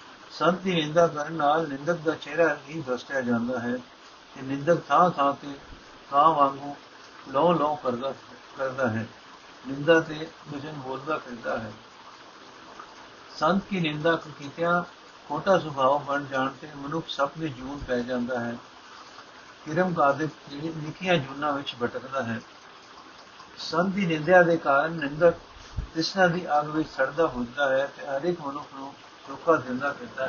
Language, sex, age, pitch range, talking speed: Punjabi, male, 60-79, 140-170 Hz, 100 wpm